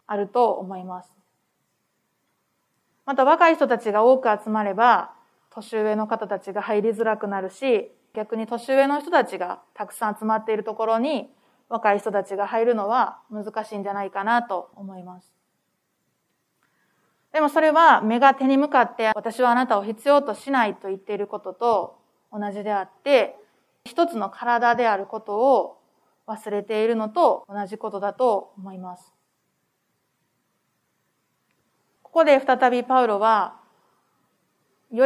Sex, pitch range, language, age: female, 205-245 Hz, Japanese, 20-39